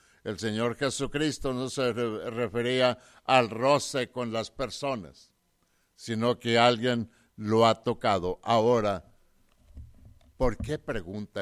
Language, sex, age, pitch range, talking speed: English, male, 60-79, 90-140 Hz, 110 wpm